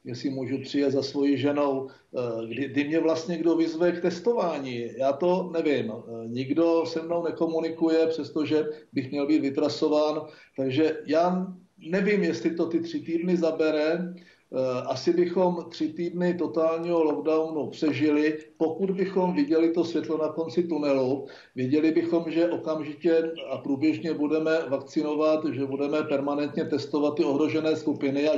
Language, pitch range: Czech, 145-165 Hz